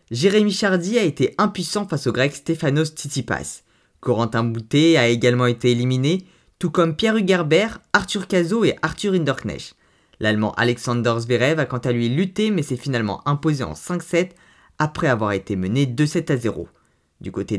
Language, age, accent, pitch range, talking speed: French, 20-39, French, 115-165 Hz, 160 wpm